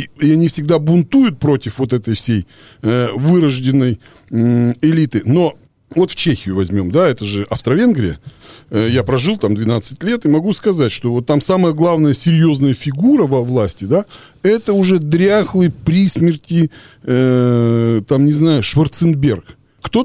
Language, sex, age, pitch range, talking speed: Russian, male, 40-59, 130-190 Hz, 140 wpm